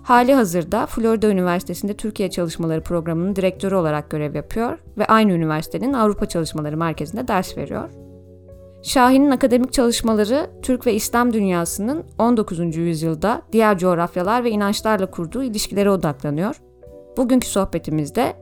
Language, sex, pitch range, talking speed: English, female, 160-230 Hz, 120 wpm